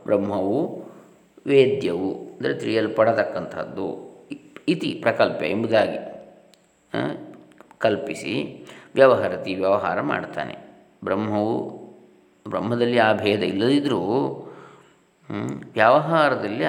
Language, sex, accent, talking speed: Kannada, male, native, 65 wpm